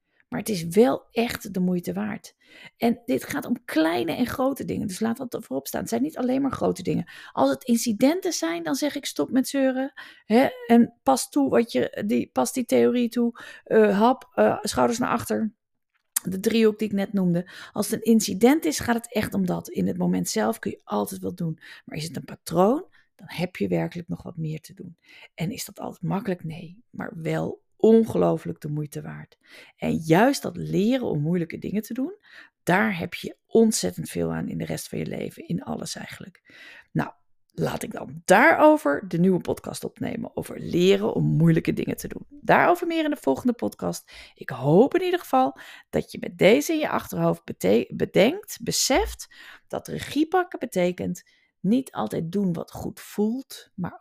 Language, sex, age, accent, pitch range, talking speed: Dutch, female, 40-59, Dutch, 170-260 Hz, 200 wpm